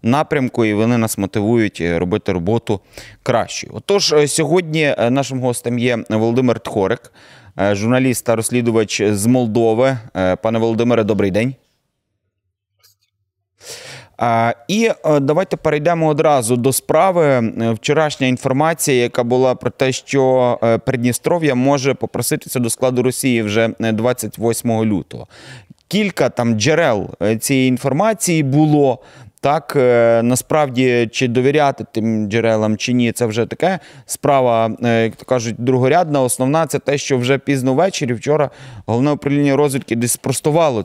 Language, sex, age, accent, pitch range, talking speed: Ukrainian, male, 30-49, native, 110-135 Hz, 120 wpm